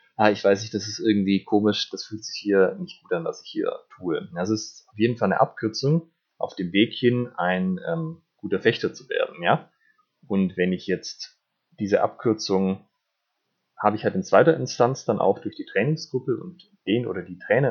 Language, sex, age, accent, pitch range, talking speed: German, male, 30-49, German, 95-155 Hz, 195 wpm